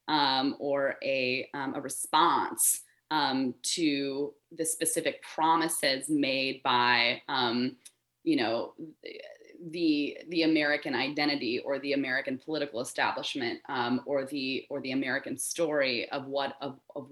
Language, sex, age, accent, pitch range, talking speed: English, female, 20-39, American, 150-230 Hz, 125 wpm